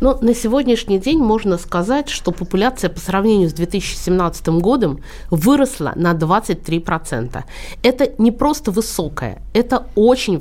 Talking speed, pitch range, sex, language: 125 wpm, 165-235 Hz, female, Russian